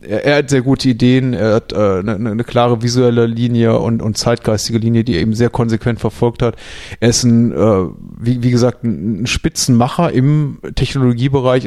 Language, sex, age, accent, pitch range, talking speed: German, male, 30-49, German, 110-125 Hz, 180 wpm